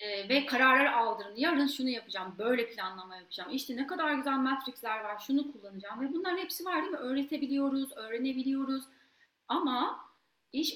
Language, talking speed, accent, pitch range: Turkish, 150 wpm, native, 235-295 Hz